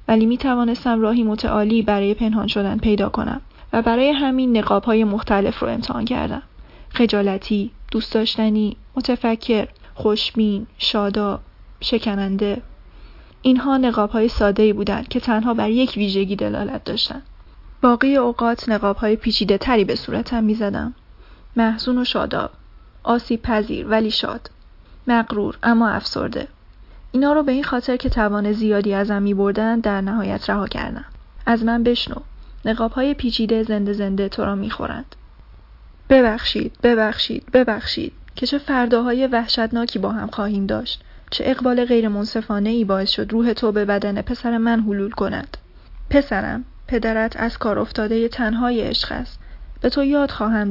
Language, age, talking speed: Persian, 10-29, 145 wpm